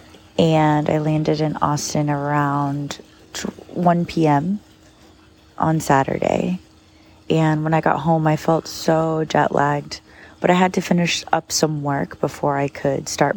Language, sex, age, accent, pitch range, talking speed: English, female, 30-49, American, 135-155 Hz, 145 wpm